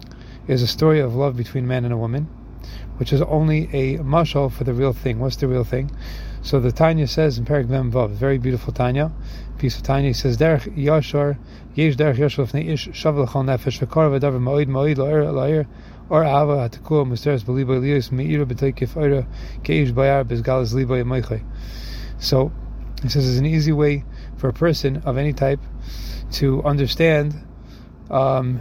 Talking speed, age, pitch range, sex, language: 115 wpm, 30-49, 125-145 Hz, male, English